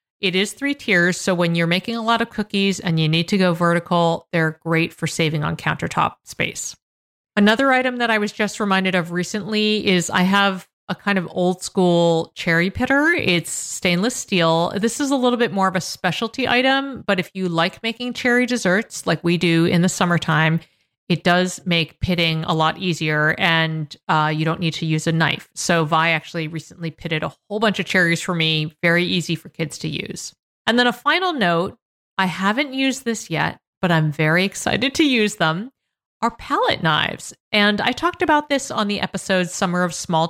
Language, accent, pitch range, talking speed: English, American, 165-215 Hz, 200 wpm